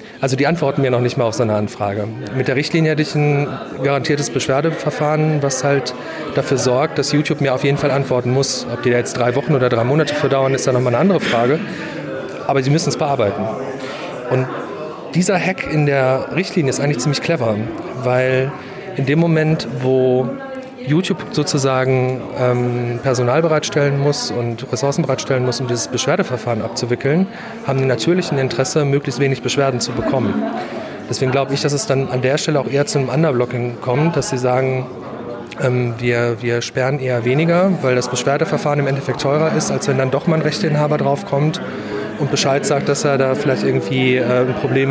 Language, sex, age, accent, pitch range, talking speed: German, male, 40-59, German, 125-150 Hz, 185 wpm